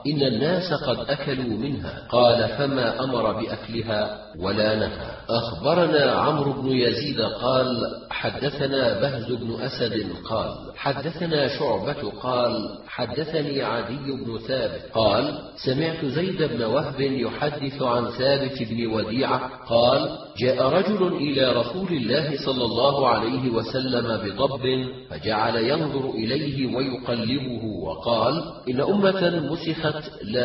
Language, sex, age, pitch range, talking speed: Arabic, male, 40-59, 115-140 Hz, 115 wpm